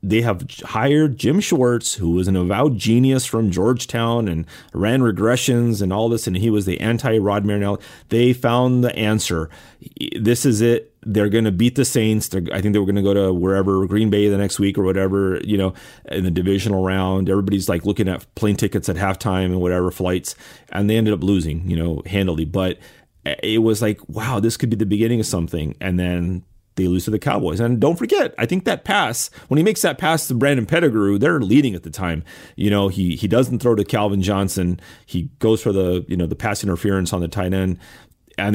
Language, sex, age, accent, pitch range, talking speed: English, male, 30-49, American, 95-115 Hz, 220 wpm